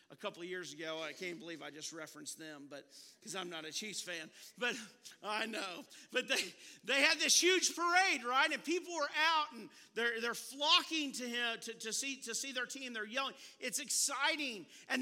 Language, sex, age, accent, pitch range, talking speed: English, male, 50-69, American, 195-285 Hz, 210 wpm